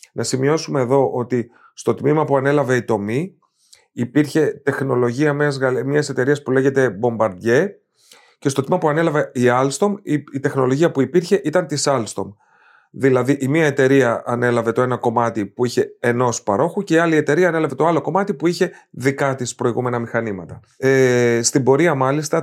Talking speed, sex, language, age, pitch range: 170 wpm, male, Greek, 30-49, 125-170 Hz